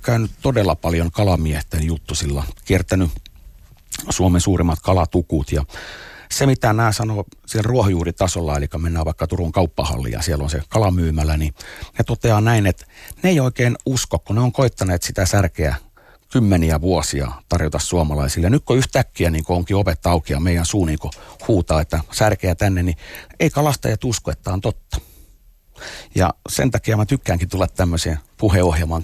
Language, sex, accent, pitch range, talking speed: Finnish, male, native, 80-105 Hz, 160 wpm